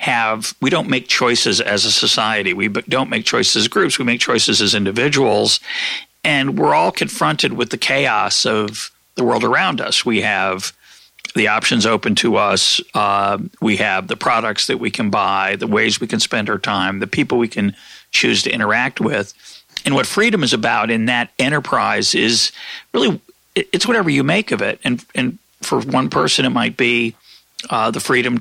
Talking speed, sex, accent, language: 190 wpm, male, American, English